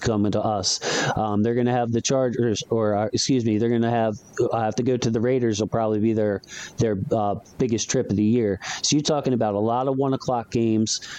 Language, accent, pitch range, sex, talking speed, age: English, American, 110-130 Hz, male, 245 wpm, 40-59